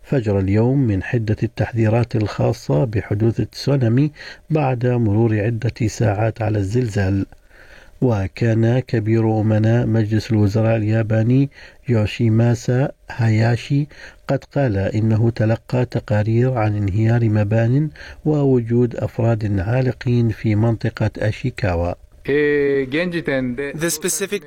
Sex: male